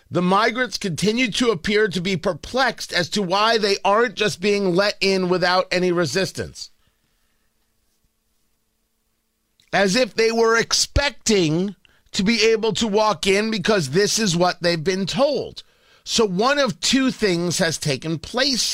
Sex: male